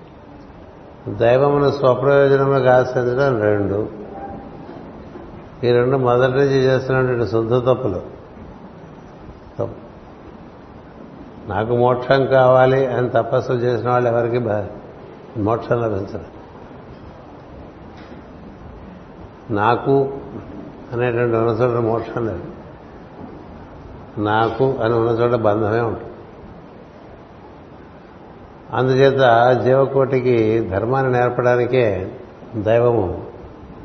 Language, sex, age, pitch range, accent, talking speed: Telugu, male, 60-79, 110-125 Hz, native, 65 wpm